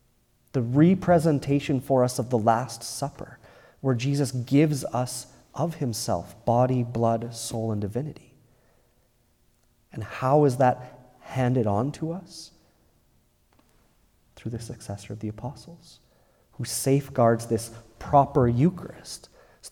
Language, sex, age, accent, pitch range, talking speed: English, male, 30-49, American, 115-145 Hz, 120 wpm